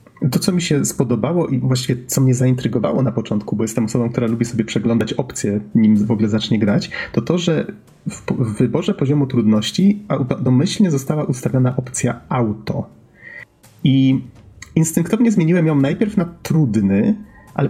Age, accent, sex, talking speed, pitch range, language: 30-49, native, male, 155 wpm, 115-155 Hz, Polish